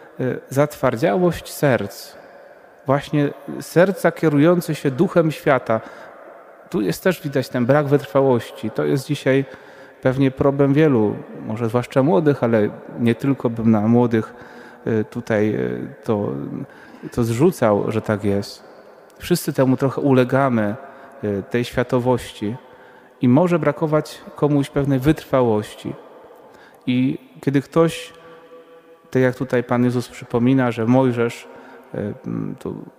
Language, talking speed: Polish, 110 wpm